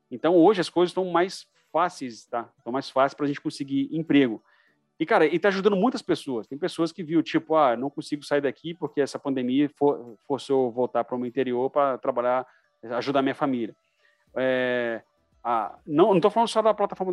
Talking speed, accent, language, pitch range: 195 wpm, Brazilian, Portuguese, 130-165 Hz